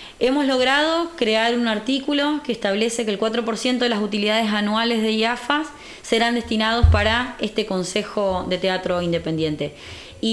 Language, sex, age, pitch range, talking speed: Spanish, female, 20-39, 200-250 Hz, 145 wpm